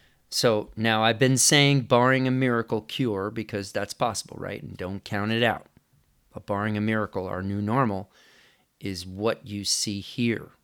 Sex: male